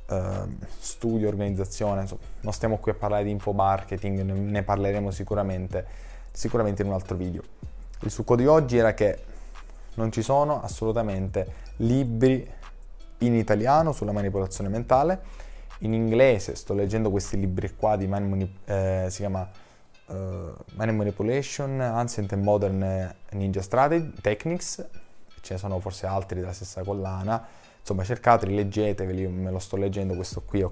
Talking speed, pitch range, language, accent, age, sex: 150 wpm, 95-110 Hz, Italian, native, 20-39, male